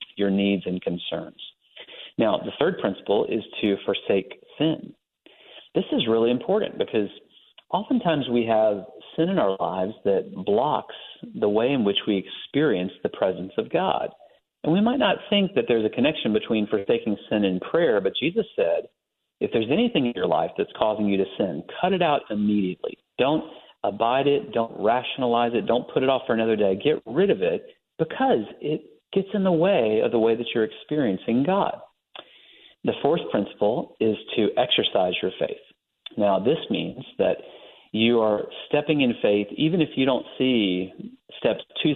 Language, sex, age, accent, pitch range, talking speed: English, male, 40-59, American, 105-160 Hz, 175 wpm